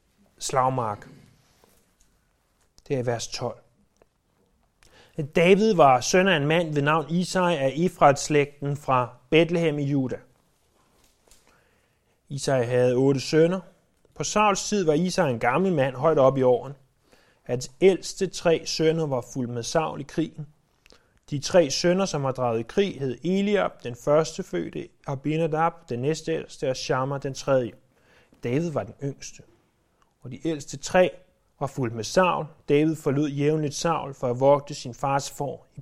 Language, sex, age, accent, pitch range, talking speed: Danish, male, 30-49, native, 135-180 Hz, 150 wpm